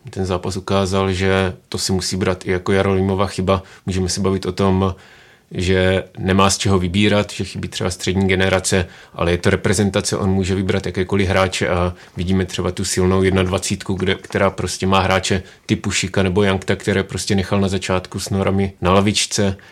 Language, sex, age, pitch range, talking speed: Czech, male, 30-49, 95-100 Hz, 180 wpm